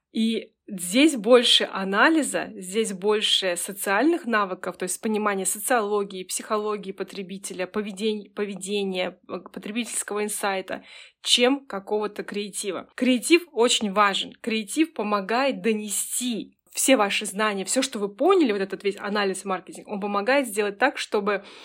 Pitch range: 200-245 Hz